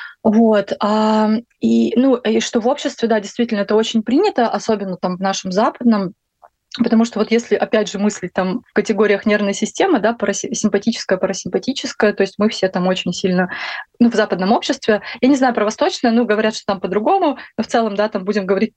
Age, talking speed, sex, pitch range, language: 20-39, 190 wpm, female, 200-235 Hz, Russian